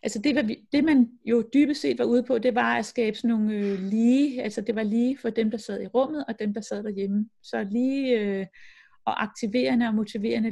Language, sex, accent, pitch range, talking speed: Danish, female, native, 205-240 Hz, 220 wpm